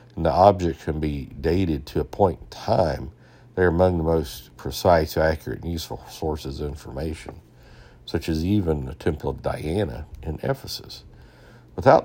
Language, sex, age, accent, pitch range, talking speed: English, male, 60-79, American, 75-95 Hz, 165 wpm